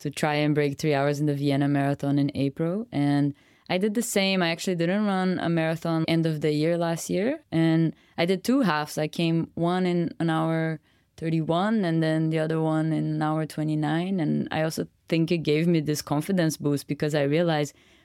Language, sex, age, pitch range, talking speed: English, female, 20-39, 145-170 Hz, 210 wpm